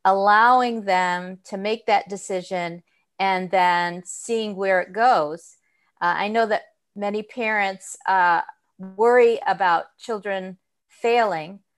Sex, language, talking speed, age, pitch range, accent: female, English, 115 wpm, 40-59, 185-220 Hz, American